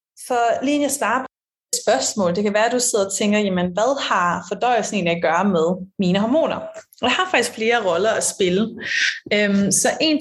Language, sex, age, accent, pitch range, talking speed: Danish, female, 30-49, native, 185-235 Hz, 200 wpm